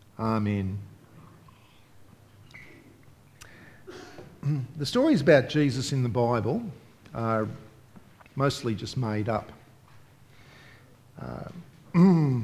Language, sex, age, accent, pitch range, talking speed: English, male, 50-69, Australian, 115-145 Hz, 70 wpm